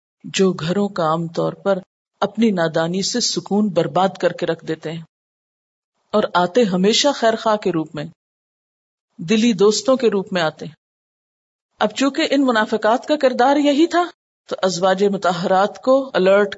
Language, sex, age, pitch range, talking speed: Urdu, female, 50-69, 175-250 Hz, 150 wpm